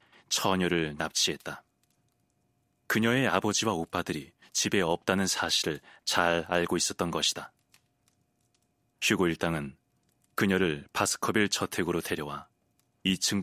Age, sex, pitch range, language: 30-49, male, 85-110 Hz, Korean